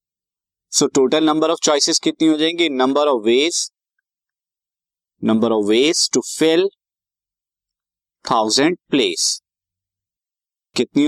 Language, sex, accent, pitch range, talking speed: Hindi, male, native, 110-155 Hz, 95 wpm